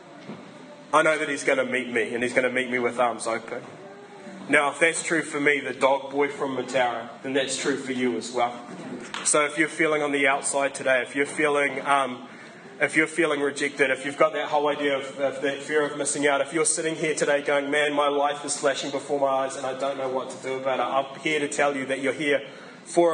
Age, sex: 20-39, female